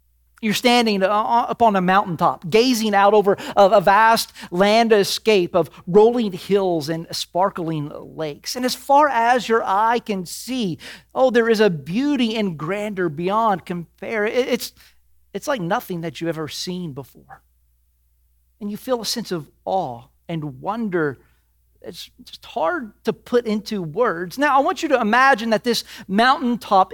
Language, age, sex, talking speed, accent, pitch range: English, 40-59, male, 155 wpm, American, 160-225 Hz